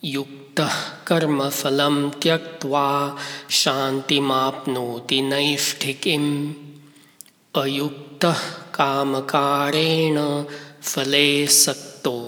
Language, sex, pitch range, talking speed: English, male, 135-160 Hz, 50 wpm